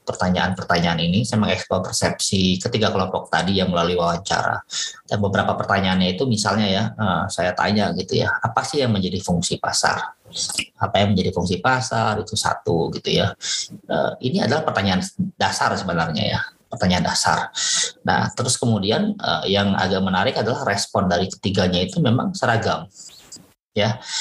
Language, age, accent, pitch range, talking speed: Indonesian, 20-39, native, 90-115 Hz, 150 wpm